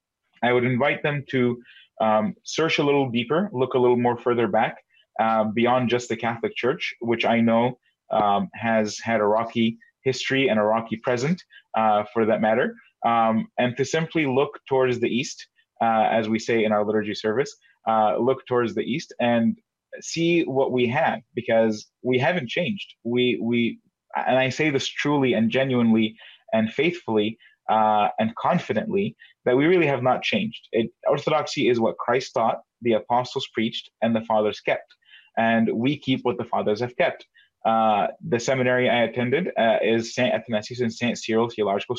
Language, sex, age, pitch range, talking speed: English, male, 20-39, 110-130 Hz, 175 wpm